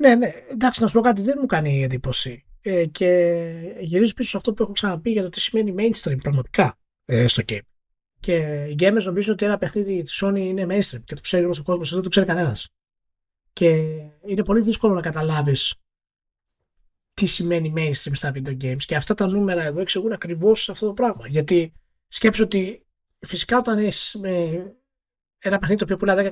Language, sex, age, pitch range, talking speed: Greek, male, 20-39, 150-205 Hz, 185 wpm